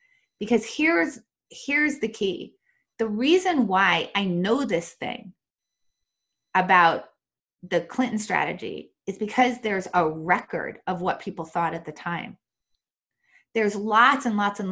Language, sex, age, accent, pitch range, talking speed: English, female, 30-49, American, 180-250 Hz, 135 wpm